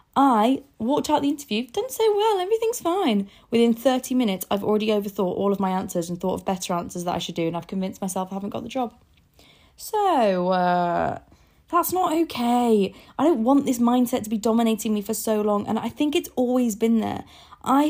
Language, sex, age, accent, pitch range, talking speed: English, female, 20-39, British, 205-255 Hz, 210 wpm